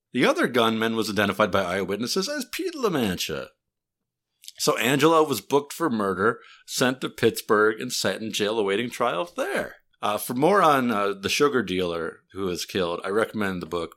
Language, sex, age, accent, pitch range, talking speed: English, male, 50-69, American, 90-125 Hz, 180 wpm